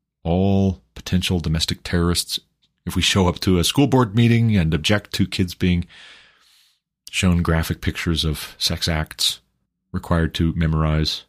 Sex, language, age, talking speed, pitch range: male, English, 30-49, 145 wpm, 80-105 Hz